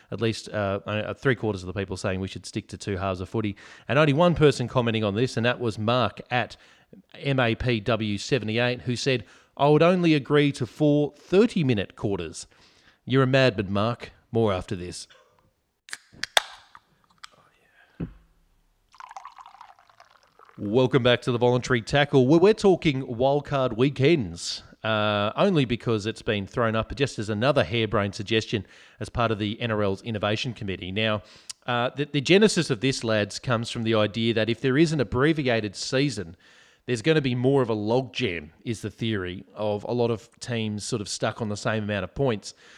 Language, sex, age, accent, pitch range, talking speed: English, male, 30-49, Australian, 105-135 Hz, 165 wpm